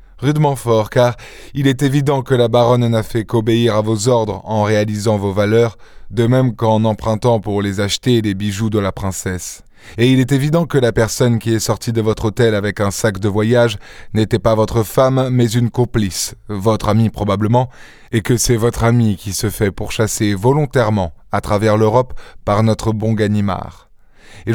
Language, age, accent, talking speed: French, 20-39, French, 190 wpm